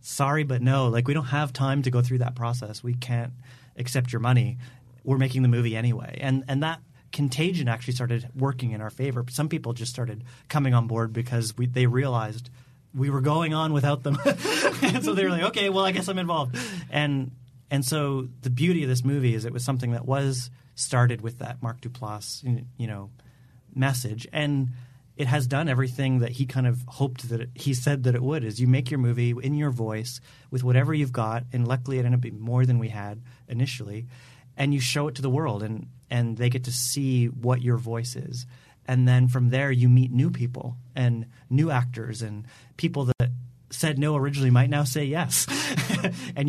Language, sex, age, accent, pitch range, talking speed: English, male, 30-49, American, 120-135 Hz, 210 wpm